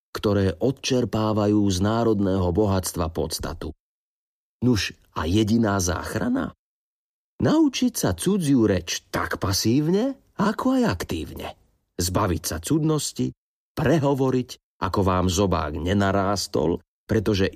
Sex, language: male, Slovak